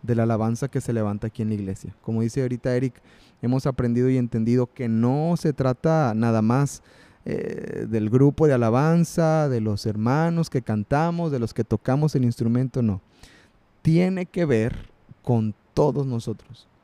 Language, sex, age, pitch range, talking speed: Spanish, male, 30-49, 115-145 Hz, 170 wpm